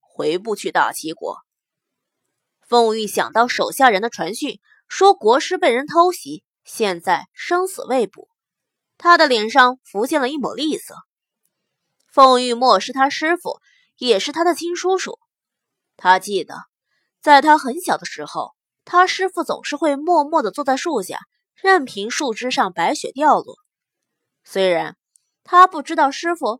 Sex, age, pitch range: female, 20-39, 245-355 Hz